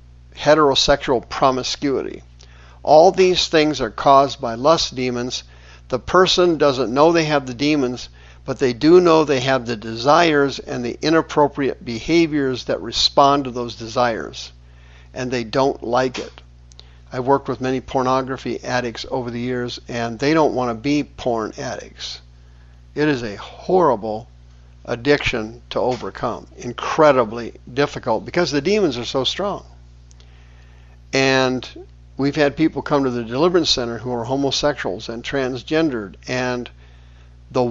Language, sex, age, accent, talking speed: English, male, 50-69, American, 140 wpm